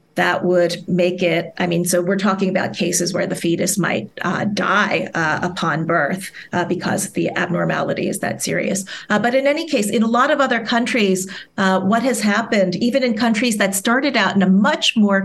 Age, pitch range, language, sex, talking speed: 40-59, 180-215 Hz, English, female, 205 wpm